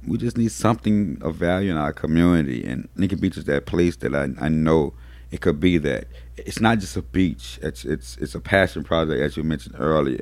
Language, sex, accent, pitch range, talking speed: English, male, American, 75-95 Hz, 225 wpm